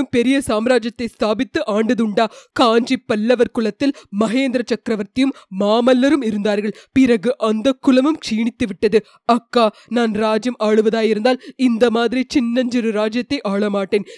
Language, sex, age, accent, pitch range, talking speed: Tamil, female, 20-39, native, 220-275 Hz, 50 wpm